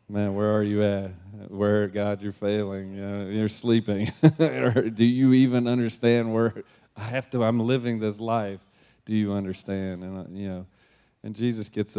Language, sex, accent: English, male, American